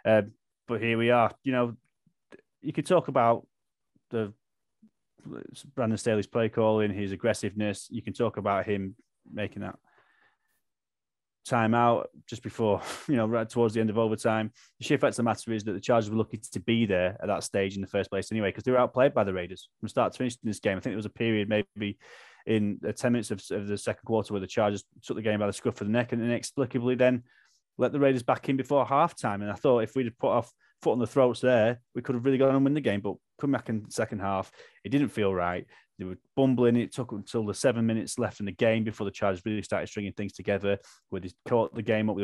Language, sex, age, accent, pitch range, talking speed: English, male, 20-39, British, 100-120 Hz, 245 wpm